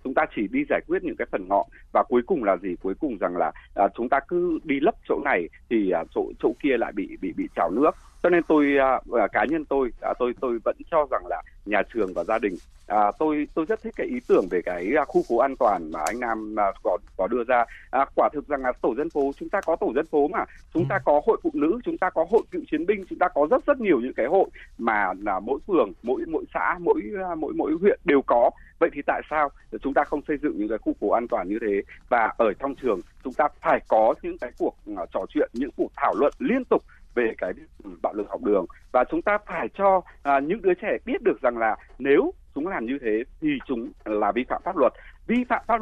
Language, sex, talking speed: Vietnamese, male, 250 wpm